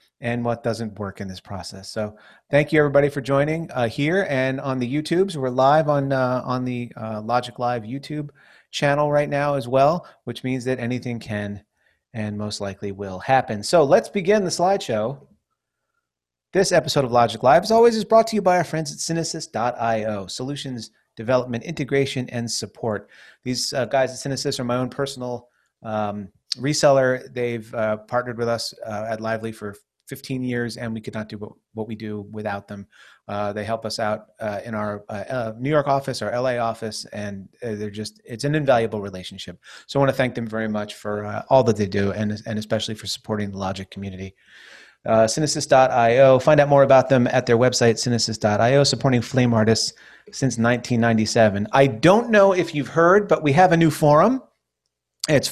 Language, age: English, 30-49